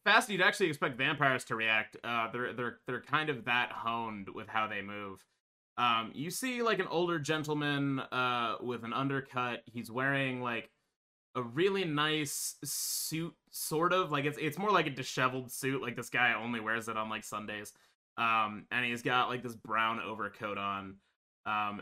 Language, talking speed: English, 180 wpm